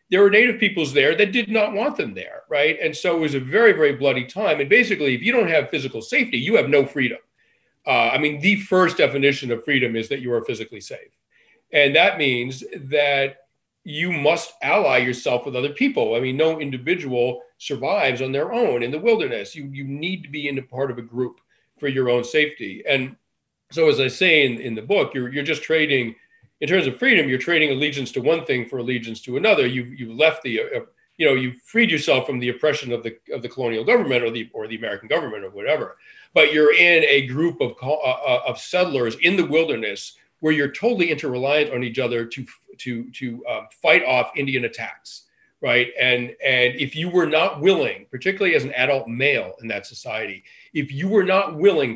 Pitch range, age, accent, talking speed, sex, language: 130-190 Hz, 40-59, American, 215 wpm, male, English